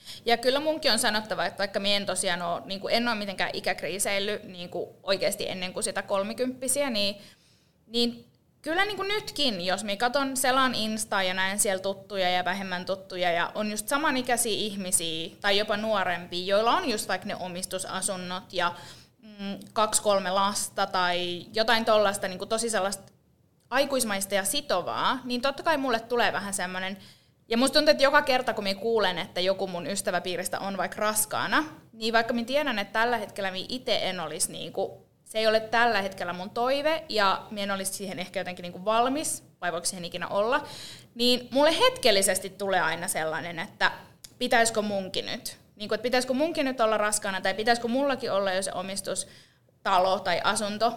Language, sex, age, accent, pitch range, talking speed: Finnish, female, 20-39, native, 190-240 Hz, 165 wpm